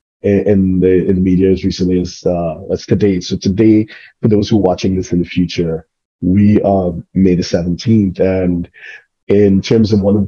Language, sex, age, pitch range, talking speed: English, male, 30-49, 90-100 Hz, 200 wpm